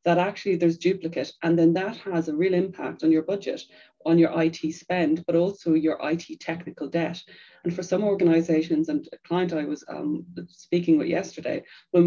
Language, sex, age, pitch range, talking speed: English, female, 30-49, 160-180 Hz, 190 wpm